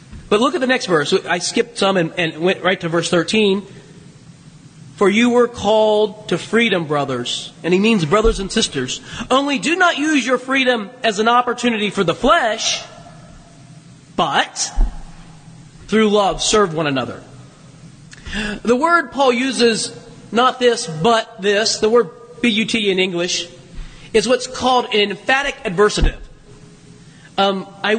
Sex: male